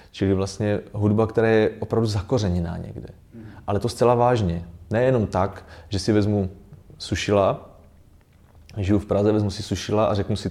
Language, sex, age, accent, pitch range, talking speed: Czech, male, 30-49, native, 95-115 Hz, 155 wpm